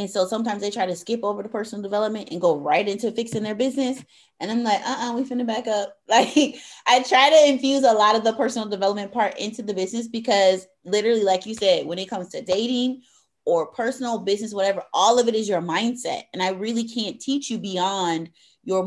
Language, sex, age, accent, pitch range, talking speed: English, female, 30-49, American, 180-230 Hz, 225 wpm